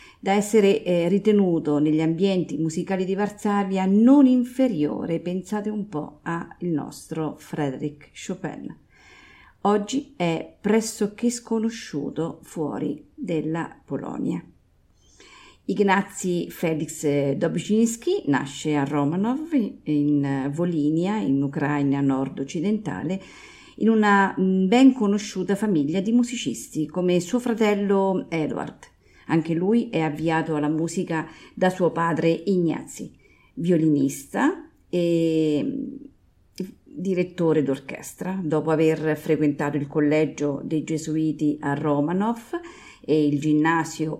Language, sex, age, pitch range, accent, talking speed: Italian, female, 40-59, 150-205 Hz, native, 100 wpm